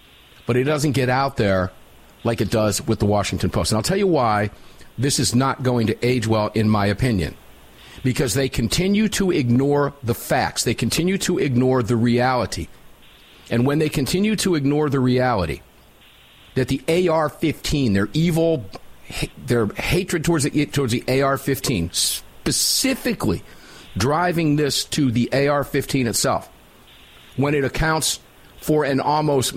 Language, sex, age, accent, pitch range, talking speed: English, male, 50-69, American, 120-165 Hz, 150 wpm